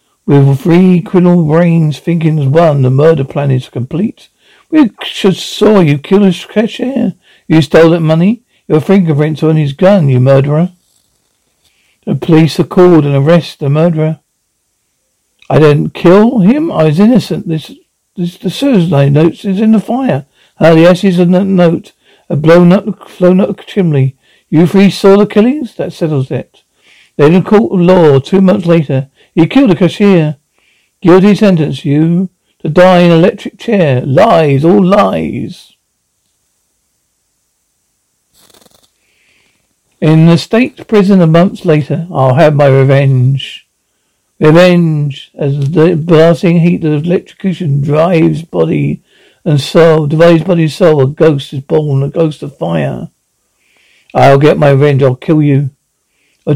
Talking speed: 155 wpm